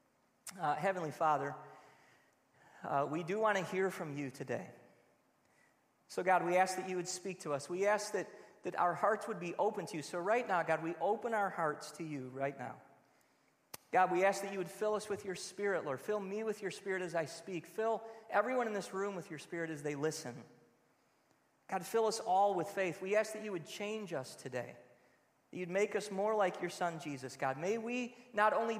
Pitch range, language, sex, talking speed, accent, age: 160-210 Hz, English, male, 215 wpm, American, 40-59